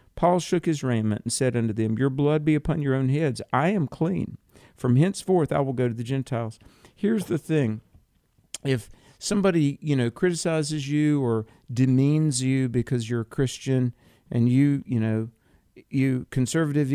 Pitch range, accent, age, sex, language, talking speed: 115-145 Hz, American, 50-69, male, English, 170 wpm